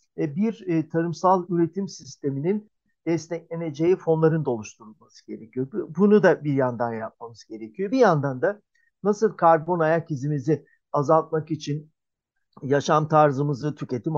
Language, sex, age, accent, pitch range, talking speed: Turkish, male, 50-69, native, 145-180 Hz, 115 wpm